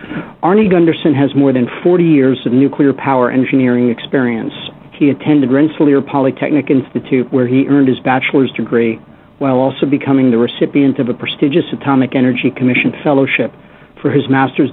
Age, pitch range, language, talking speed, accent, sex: 50-69, 125-150 Hz, English, 155 wpm, American, male